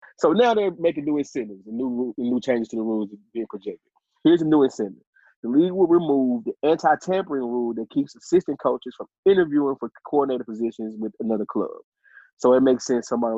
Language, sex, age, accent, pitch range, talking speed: English, male, 20-39, American, 115-150 Hz, 195 wpm